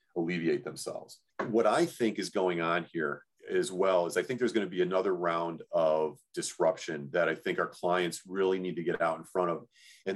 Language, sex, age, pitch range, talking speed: English, male, 40-59, 90-115 Hz, 215 wpm